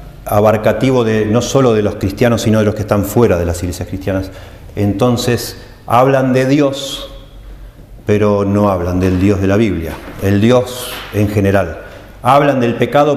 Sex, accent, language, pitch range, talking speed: male, Argentinian, Spanish, 100-125 Hz, 165 wpm